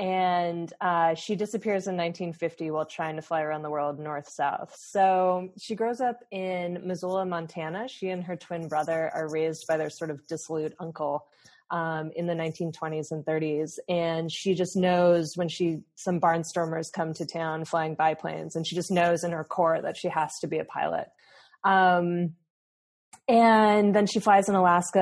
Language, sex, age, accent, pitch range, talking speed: English, female, 20-39, American, 160-185 Hz, 180 wpm